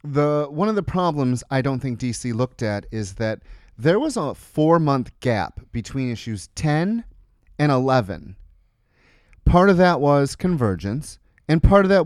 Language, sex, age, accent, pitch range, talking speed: English, male, 30-49, American, 95-155 Hz, 160 wpm